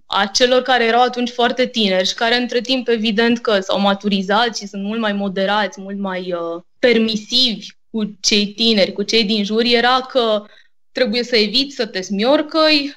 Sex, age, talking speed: female, 20-39, 175 wpm